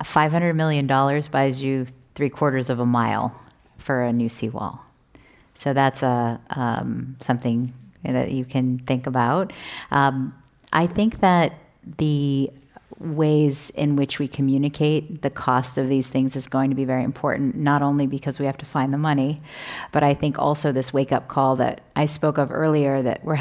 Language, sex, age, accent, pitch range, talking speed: English, female, 40-59, American, 135-155 Hz, 170 wpm